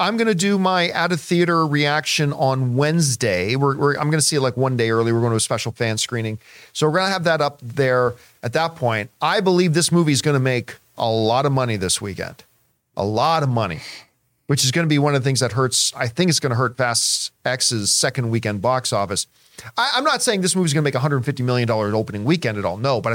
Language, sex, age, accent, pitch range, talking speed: English, male, 40-59, American, 120-175 Hz, 245 wpm